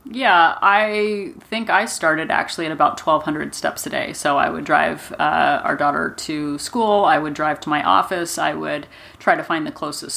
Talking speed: 205 wpm